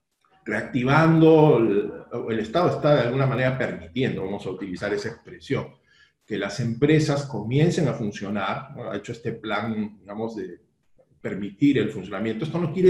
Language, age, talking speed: Spanish, 40-59, 150 wpm